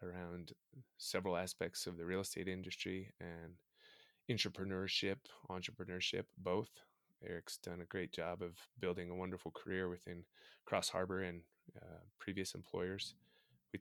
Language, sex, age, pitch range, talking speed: English, male, 20-39, 85-95 Hz, 130 wpm